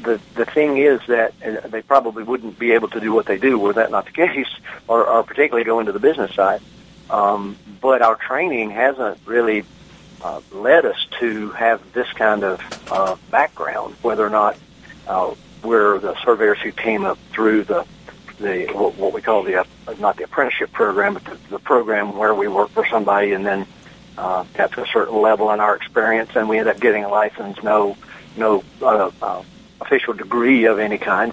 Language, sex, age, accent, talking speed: English, male, 60-79, American, 195 wpm